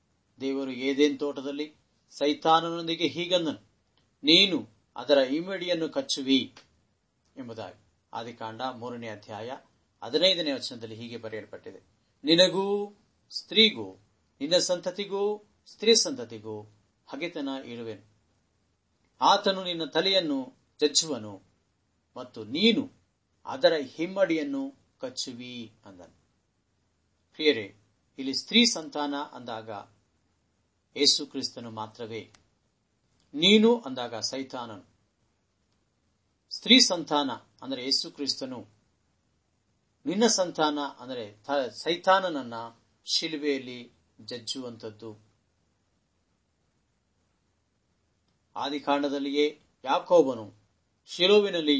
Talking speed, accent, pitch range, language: 65 wpm, native, 105-155 Hz, Kannada